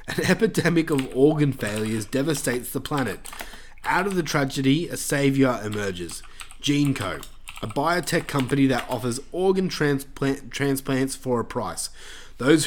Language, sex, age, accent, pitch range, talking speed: English, male, 20-39, Australian, 120-150 Hz, 130 wpm